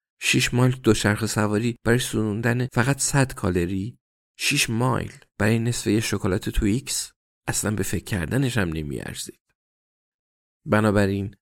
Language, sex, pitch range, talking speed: Persian, male, 90-110 Hz, 135 wpm